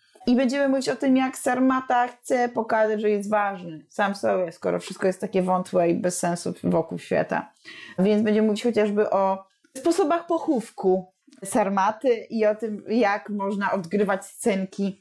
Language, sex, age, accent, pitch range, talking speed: Polish, female, 20-39, native, 200-270 Hz, 155 wpm